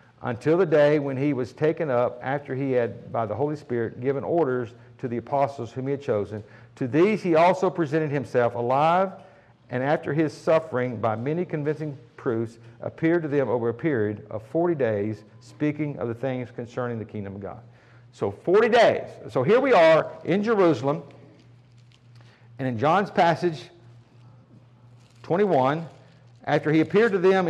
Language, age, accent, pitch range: English, 50-69, American, 120-165 Hz